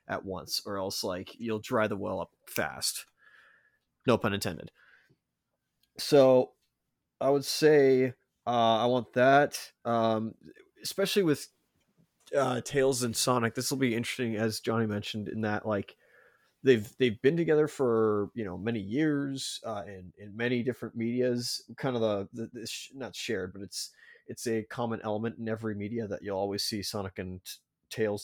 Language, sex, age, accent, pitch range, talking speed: English, male, 30-49, American, 110-130 Hz, 165 wpm